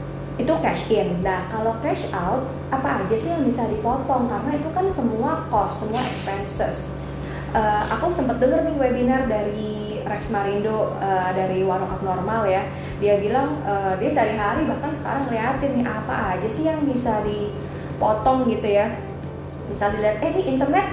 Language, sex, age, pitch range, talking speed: Indonesian, female, 20-39, 190-235 Hz, 160 wpm